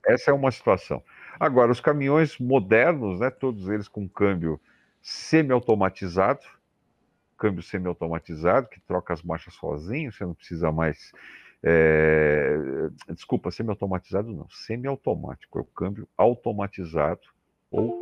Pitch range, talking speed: 90-130 Hz, 115 wpm